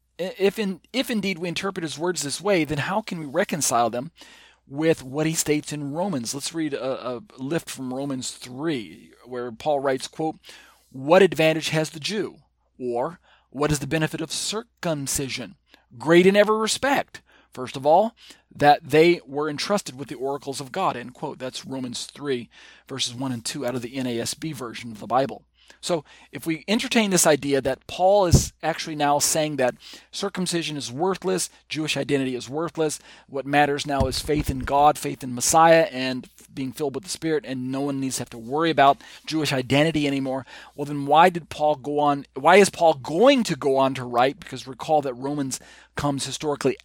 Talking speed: 190 wpm